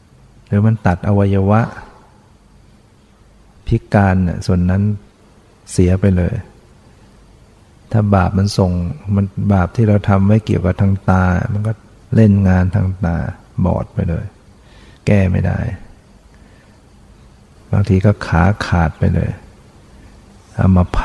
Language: Thai